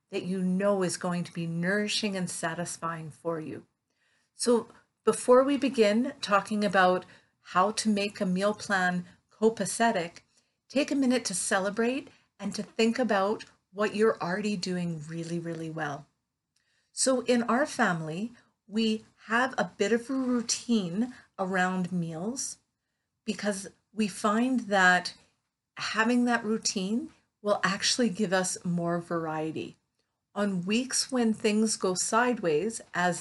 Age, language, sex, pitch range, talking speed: 50-69, English, female, 180-230 Hz, 135 wpm